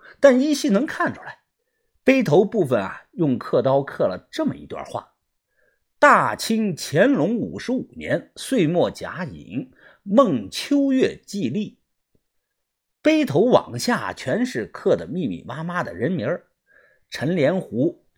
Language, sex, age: Chinese, male, 50-69